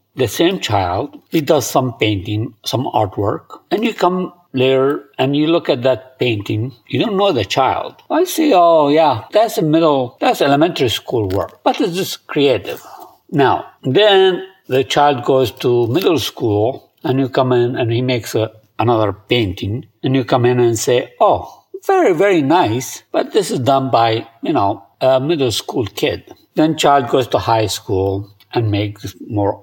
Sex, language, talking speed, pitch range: male, English, 175 wpm, 105-140 Hz